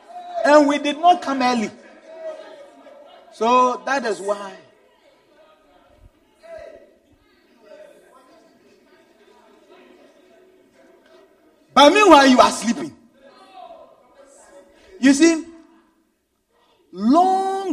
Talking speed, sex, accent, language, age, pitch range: 60 wpm, male, Nigerian, English, 50-69, 245-325 Hz